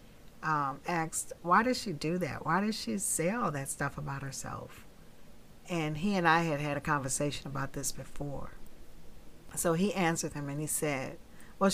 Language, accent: English, American